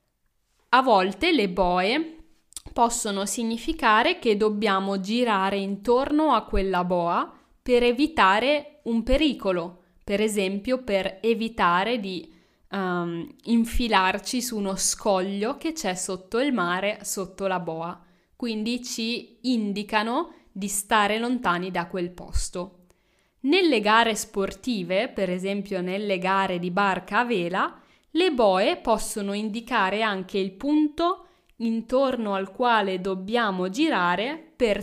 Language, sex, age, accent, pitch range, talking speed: Italian, female, 10-29, native, 190-245 Hz, 115 wpm